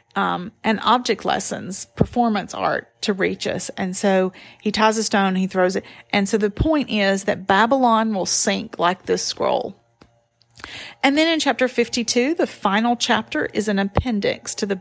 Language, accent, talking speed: English, American, 175 wpm